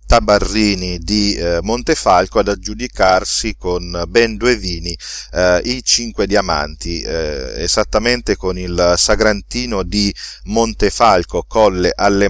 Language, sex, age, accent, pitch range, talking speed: Italian, male, 40-59, native, 90-115 Hz, 110 wpm